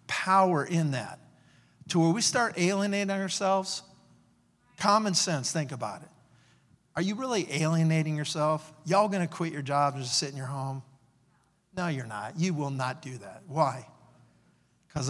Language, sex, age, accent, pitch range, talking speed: English, male, 50-69, American, 140-175 Hz, 160 wpm